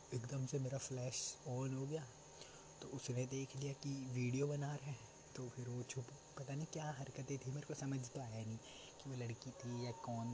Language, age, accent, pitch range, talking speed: Hindi, 20-39, native, 115-135 Hz, 215 wpm